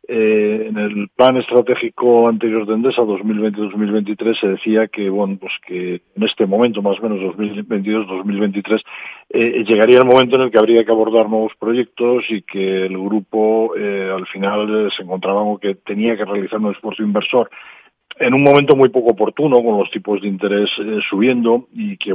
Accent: Spanish